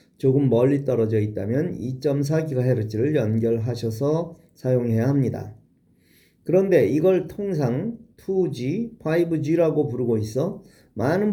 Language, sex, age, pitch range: Korean, male, 40-59, 120-170 Hz